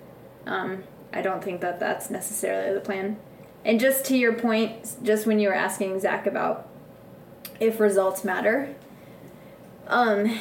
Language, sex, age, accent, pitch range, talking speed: English, female, 20-39, American, 195-225 Hz, 145 wpm